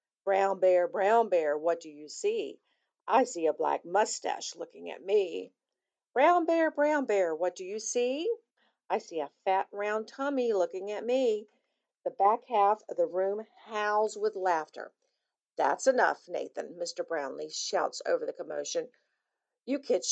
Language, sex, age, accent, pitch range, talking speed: English, female, 50-69, American, 185-265 Hz, 160 wpm